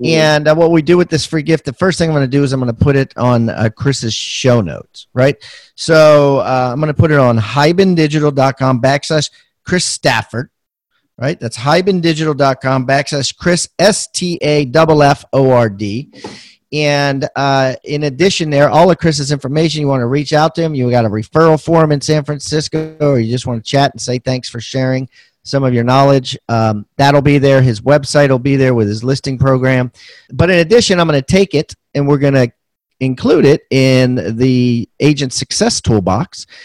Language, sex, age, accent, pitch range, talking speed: English, male, 40-59, American, 130-155 Hz, 200 wpm